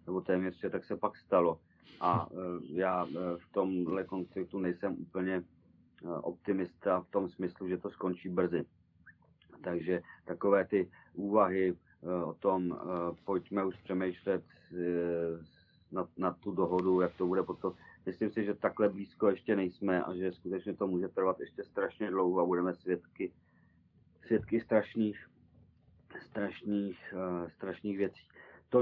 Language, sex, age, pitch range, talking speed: Czech, male, 40-59, 90-100 Hz, 130 wpm